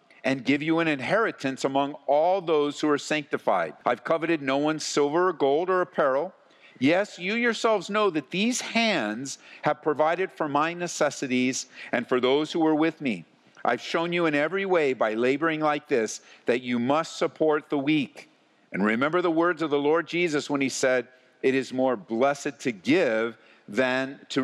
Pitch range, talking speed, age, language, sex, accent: 140-185 Hz, 180 wpm, 50-69, English, male, American